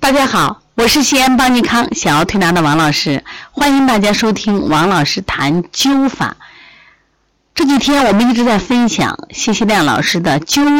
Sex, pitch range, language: female, 170-255 Hz, Chinese